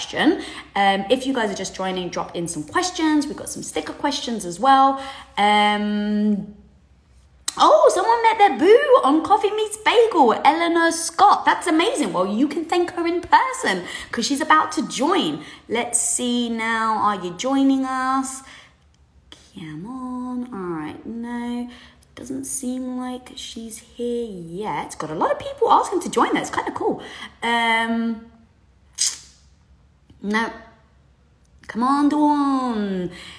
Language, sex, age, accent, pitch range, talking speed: English, female, 20-39, British, 200-285 Hz, 145 wpm